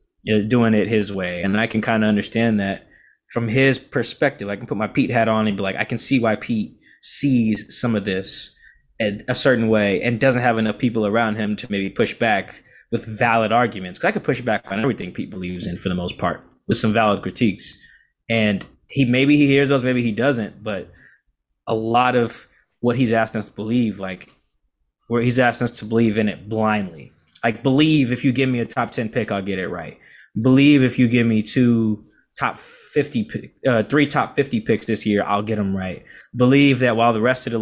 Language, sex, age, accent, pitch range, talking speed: English, male, 20-39, American, 105-120 Hz, 225 wpm